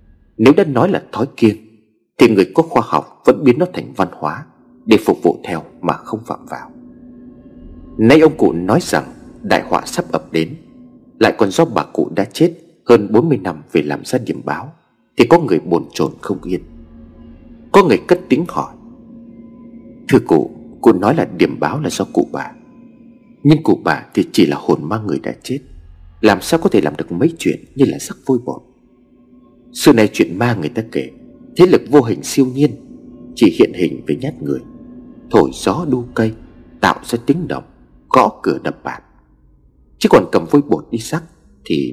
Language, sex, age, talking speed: Vietnamese, male, 30-49, 195 wpm